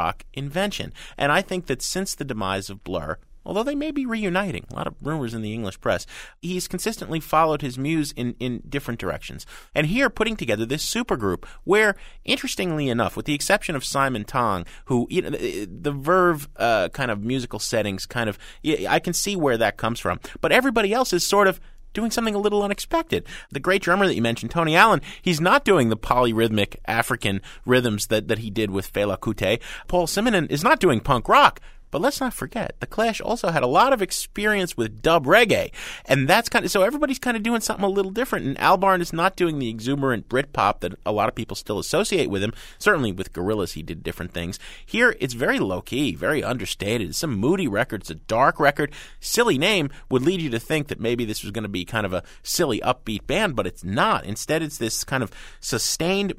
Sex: male